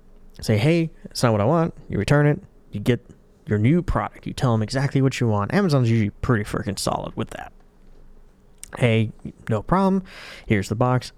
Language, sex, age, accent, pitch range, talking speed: English, male, 30-49, American, 105-145 Hz, 190 wpm